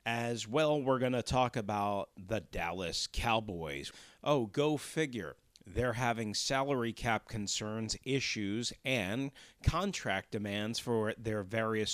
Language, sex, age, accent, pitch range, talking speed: English, male, 40-59, American, 105-135 Hz, 125 wpm